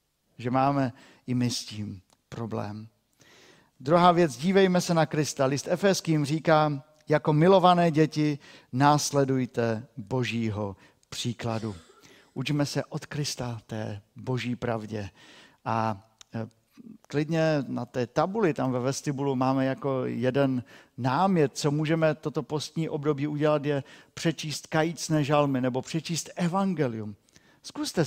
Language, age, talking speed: Czech, 50-69, 120 wpm